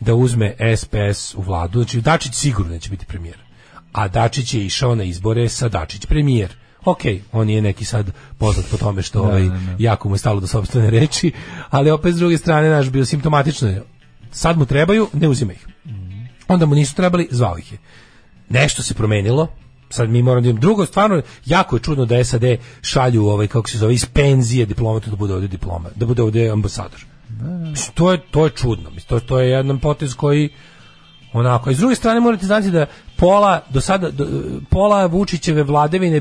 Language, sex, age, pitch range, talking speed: English, male, 40-59, 105-155 Hz, 180 wpm